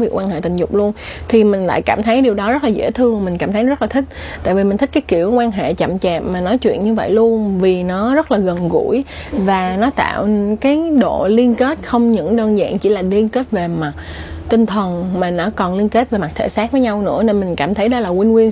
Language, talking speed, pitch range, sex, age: Vietnamese, 270 wpm, 185-235 Hz, female, 20-39